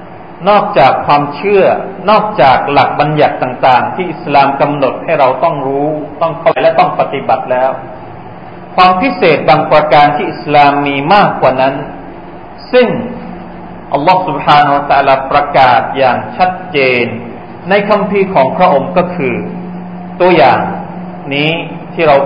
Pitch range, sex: 145-205 Hz, male